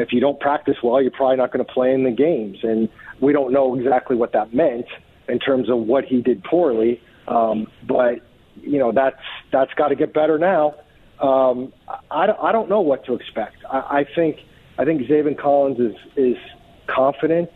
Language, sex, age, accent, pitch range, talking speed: English, male, 40-59, American, 125-145 Hz, 200 wpm